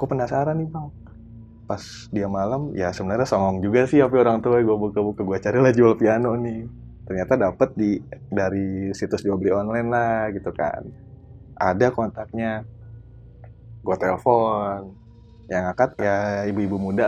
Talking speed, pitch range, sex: 150 wpm, 95-115 Hz, male